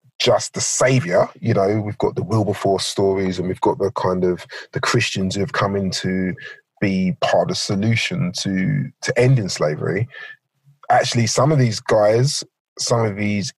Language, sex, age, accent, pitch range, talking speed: English, male, 30-49, British, 105-135 Hz, 180 wpm